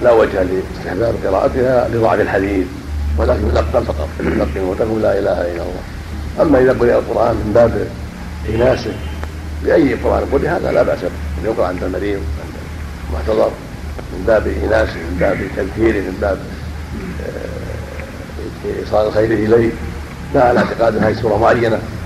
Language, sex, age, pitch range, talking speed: Arabic, male, 60-79, 80-110 Hz, 145 wpm